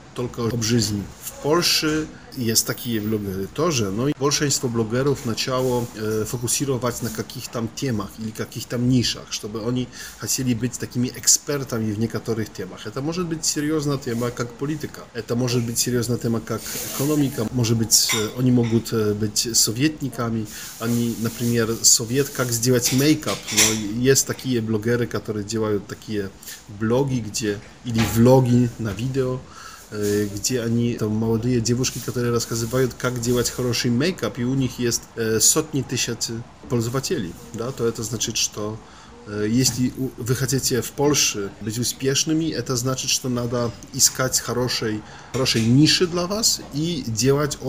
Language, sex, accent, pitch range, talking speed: Ukrainian, male, Polish, 115-130 Hz, 145 wpm